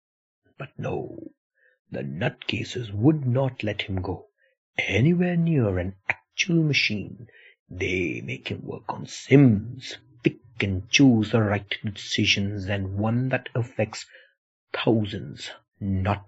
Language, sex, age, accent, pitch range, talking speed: English, male, 60-79, Indian, 100-130 Hz, 120 wpm